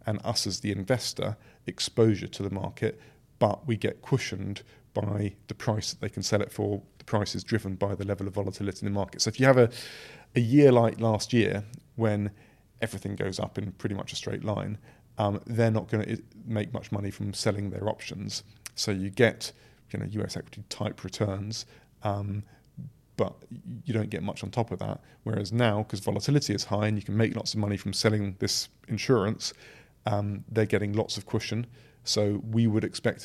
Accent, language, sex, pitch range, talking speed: British, English, male, 100-115 Hz, 200 wpm